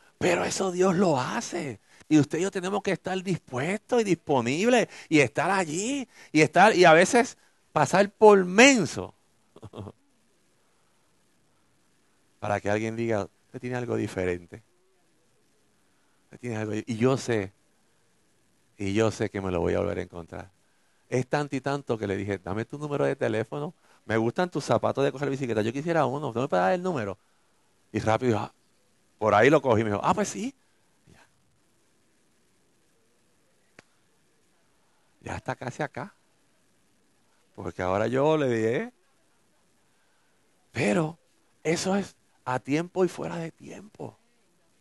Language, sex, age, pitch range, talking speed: Spanish, male, 50-69, 110-175 Hz, 145 wpm